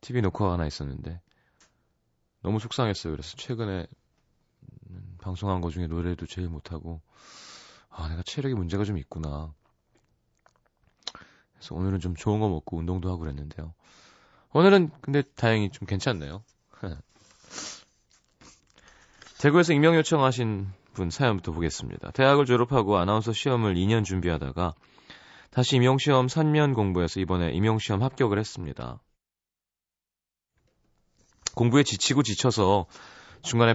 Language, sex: Korean, male